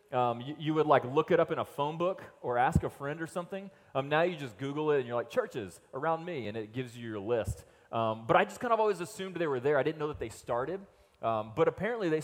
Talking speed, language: 280 wpm, English